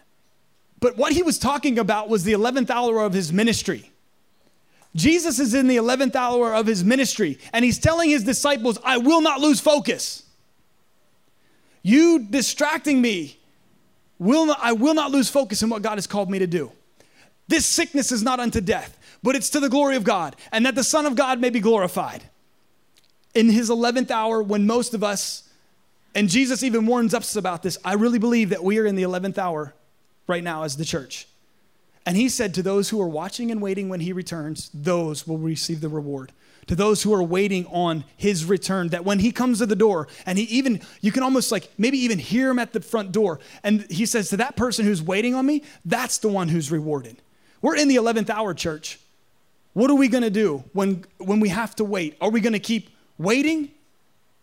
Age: 30-49